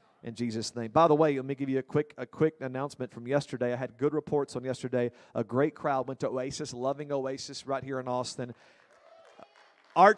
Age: 40-59